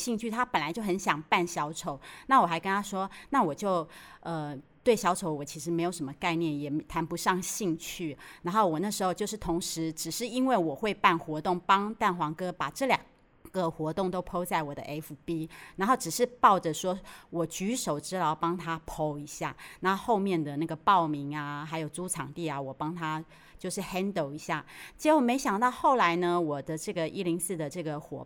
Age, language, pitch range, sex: 30-49, Chinese, 160-210 Hz, female